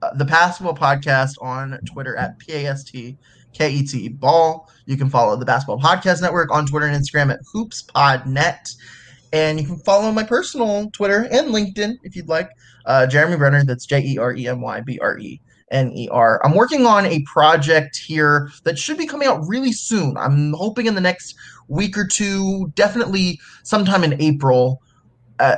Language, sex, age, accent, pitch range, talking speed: English, male, 20-39, American, 135-180 Hz, 150 wpm